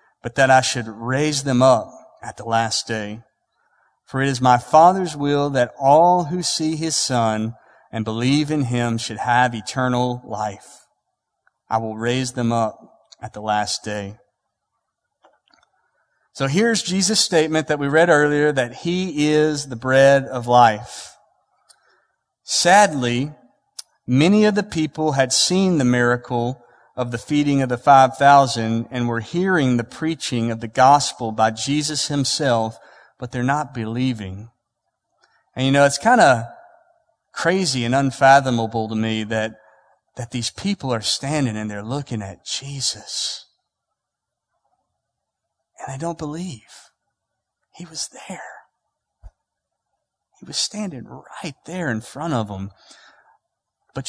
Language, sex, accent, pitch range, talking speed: English, male, American, 115-155 Hz, 140 wpm